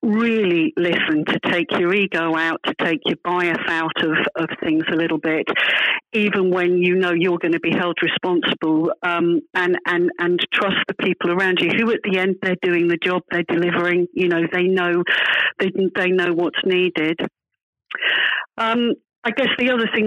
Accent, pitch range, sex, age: British, 170-190 Hz, female, 50-69